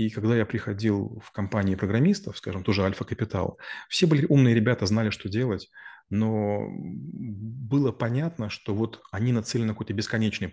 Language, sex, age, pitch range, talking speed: Russian, male, 30-49, 100-120 Hz, 160 wpm